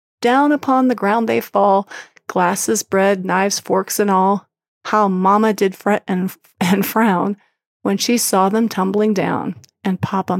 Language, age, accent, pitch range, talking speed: English, 30-49, American, 190-220 Hz, 155 wpm